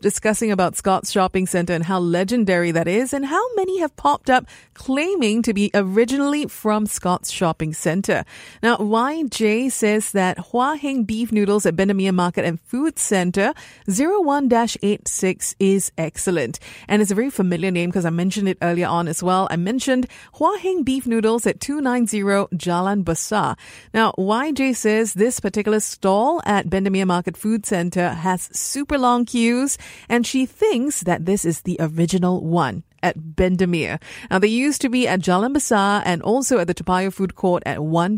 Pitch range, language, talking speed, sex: 185-245 Hz, English, 170 wpm, female